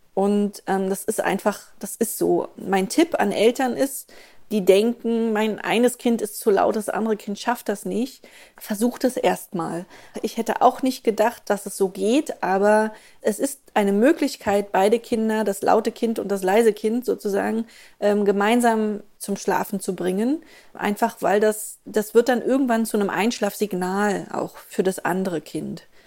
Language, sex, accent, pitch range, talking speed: German, female, German, 195-235 Hz, 175 wpm